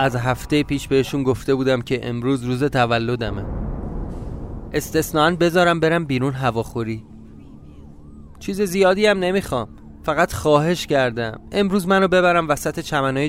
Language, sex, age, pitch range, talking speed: Persian, male, 30-49, 125-185 Hz, 120 wpm